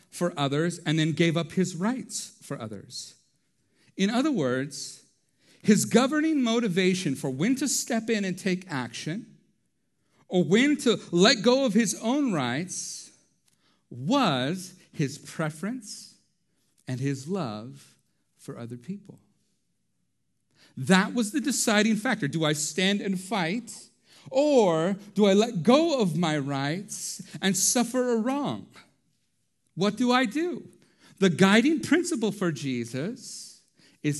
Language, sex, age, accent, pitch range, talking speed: English, male, 50-69, American, 130-205 Hz, 130 wpm